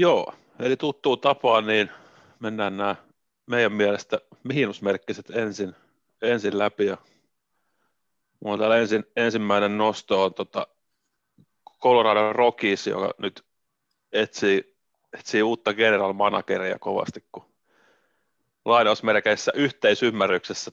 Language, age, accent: Finnish, 30-49, native